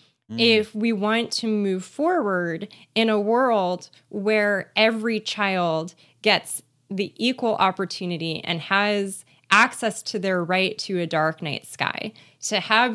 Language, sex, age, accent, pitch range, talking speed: English, female, 20-39, American, 180-225 Hz, 135 wpm